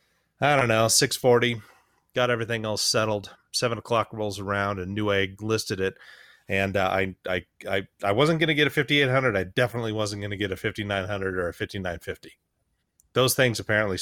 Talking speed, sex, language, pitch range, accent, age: 180 wpm, male, English, 95-115 Hz, American, 30-49